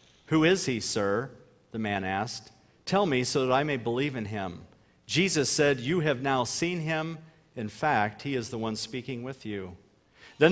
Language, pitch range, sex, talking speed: English, 110-150 Hz, male, 190 wpm